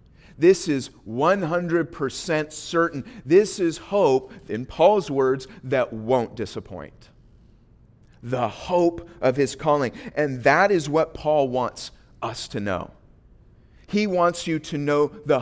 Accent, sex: American, male